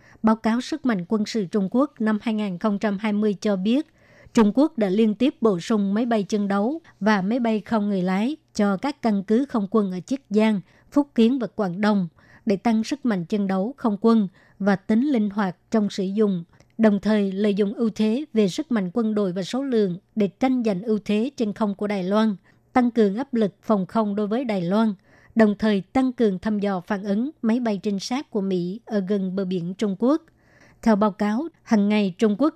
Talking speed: 220 wpm